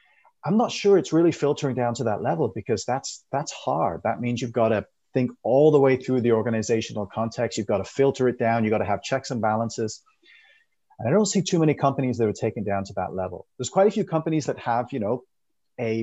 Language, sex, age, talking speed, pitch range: English, male, 30-49, 240 wpm, 110-140 Hz